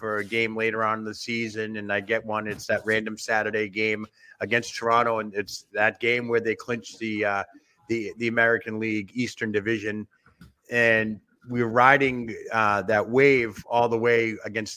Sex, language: male, English